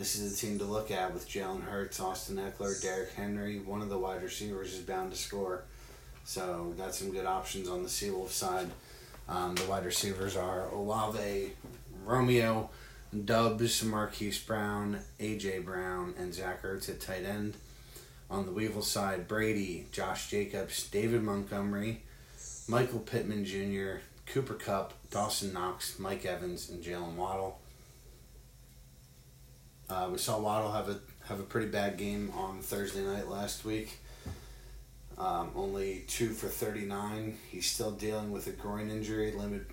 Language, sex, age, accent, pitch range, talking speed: English, male, 30-49, American, 95-105 Hz, 155 wpm